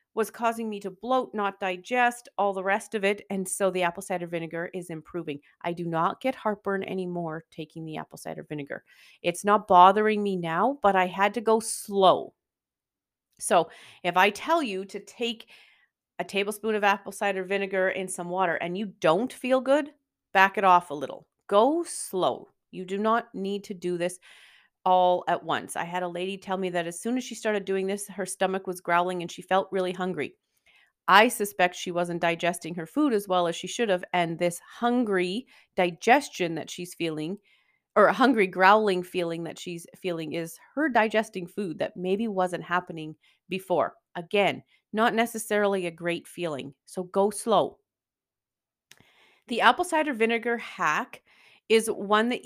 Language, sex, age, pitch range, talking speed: English, female, 40-59, 175-215 Hz, 180 wpm